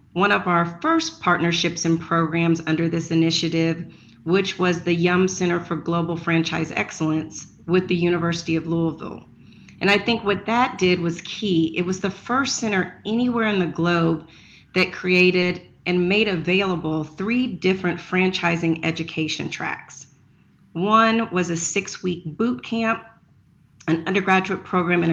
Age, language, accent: 40-59, English, American